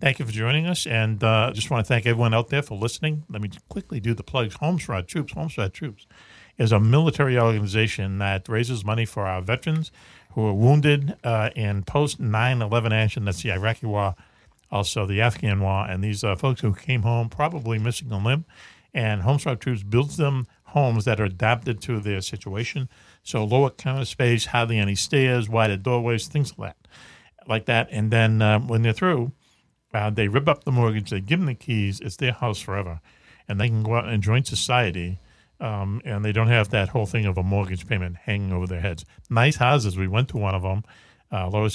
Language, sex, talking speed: English, male, 205 wpm